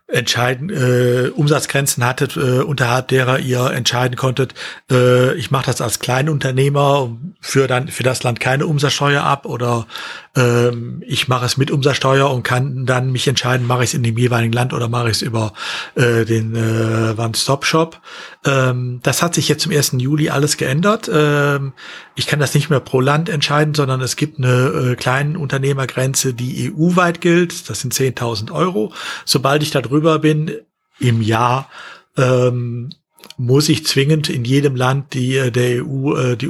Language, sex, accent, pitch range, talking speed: German, male, German, 125-150 Hz, 170 wpm